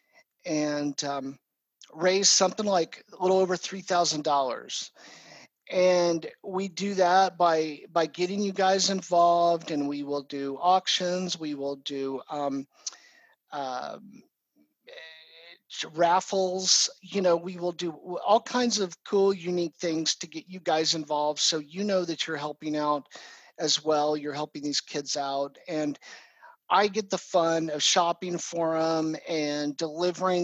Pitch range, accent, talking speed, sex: 150-185 Hz, American, 145 wpm, male